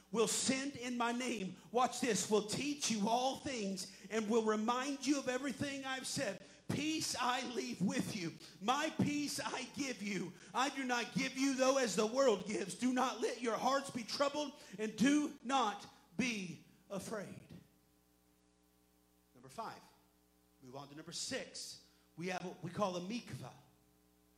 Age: 40-59